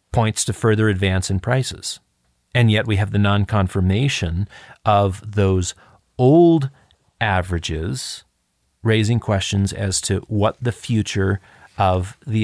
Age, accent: 40-59, American